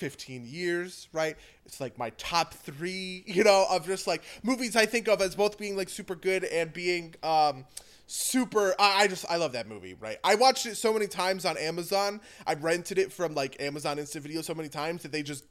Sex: male